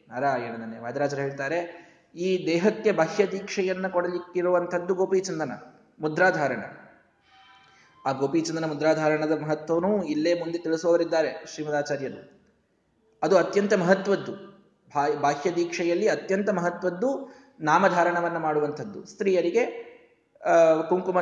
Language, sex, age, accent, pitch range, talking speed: Kannada, male, 20-39, native, 145-195 Hz, 80 wpm